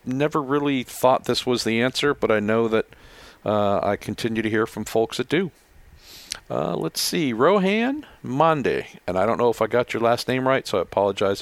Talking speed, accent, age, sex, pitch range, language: 205 wpm, American, 50-69, male, 105-130 Hz, English